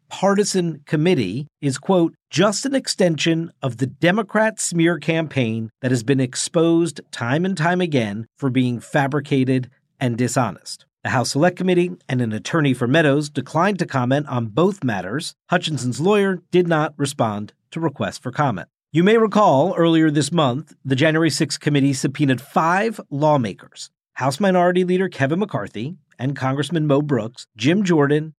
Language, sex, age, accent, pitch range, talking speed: English, male, 50-69, American, 130-175 Hz, 155 wpm